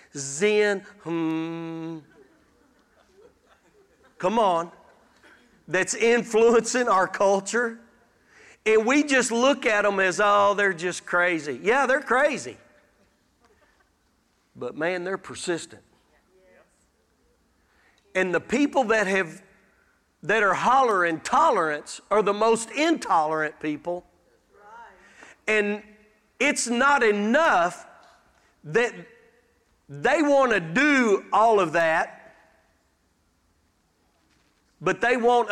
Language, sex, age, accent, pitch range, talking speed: English, male, 40-59, American, 165-235 Hz, 95 wpm